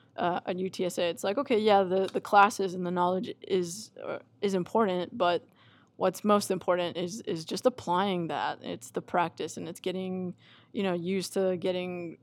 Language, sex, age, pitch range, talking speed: English, female, 20-39, 170-195 Hz, 180 wpm